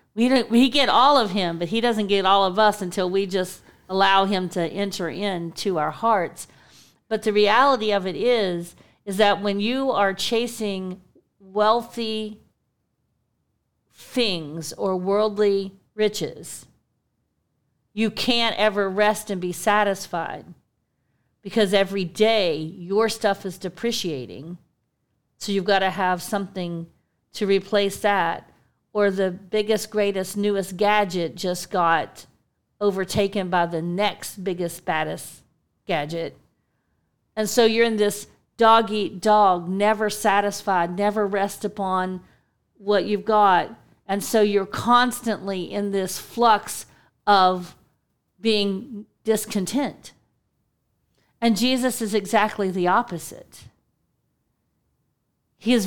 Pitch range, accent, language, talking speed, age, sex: 185-215 Hz, American, English, 120 wpm, 50-69, female